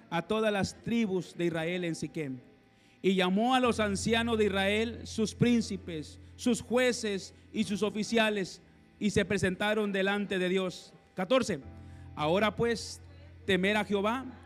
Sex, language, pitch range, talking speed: male, Spanish, 195-250 Hz, 140 wpm